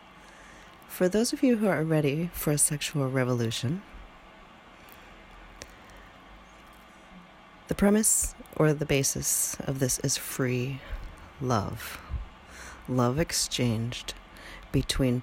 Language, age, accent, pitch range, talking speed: English, 40-59, American, 115-160 Hz, 95 wpm